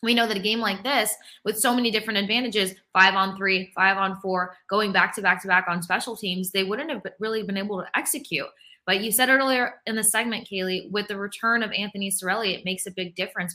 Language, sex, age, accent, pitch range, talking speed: English, female, 20-39, American, 185-225 Hz, 240 wpm